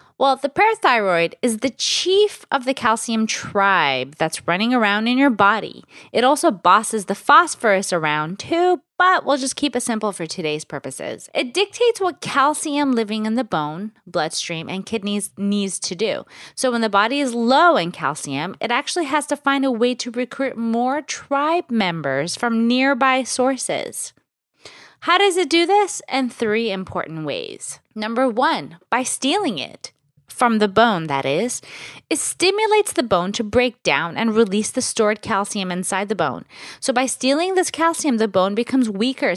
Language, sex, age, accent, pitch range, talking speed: English, female, 20-39, American, 195-280 Hz, 170 wpm